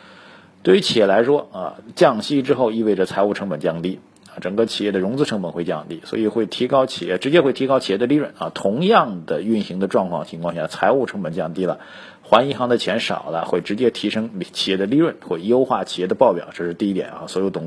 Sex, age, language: male, 50-69, Chinese